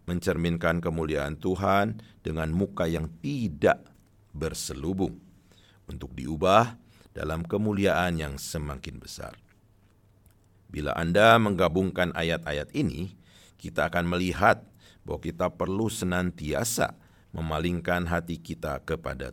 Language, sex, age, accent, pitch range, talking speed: Indonesian, male, 50-69, native, 80-100 Hz, 95 wpm